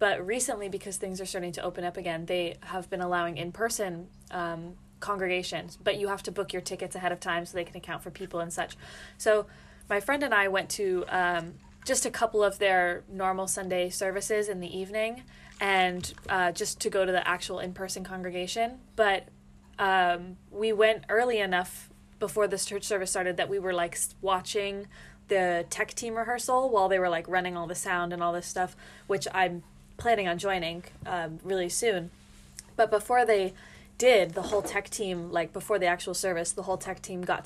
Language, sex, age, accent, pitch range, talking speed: English, female, 20-39, American, 180-210 Hz, 195 wpm